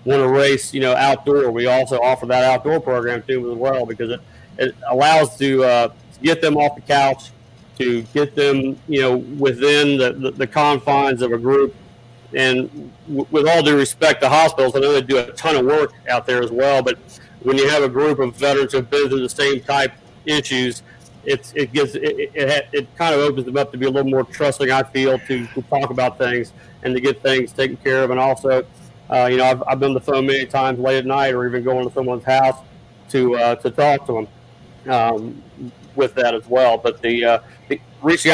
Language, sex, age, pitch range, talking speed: English, male, 40-59, 125-140 Hz, 230 wpm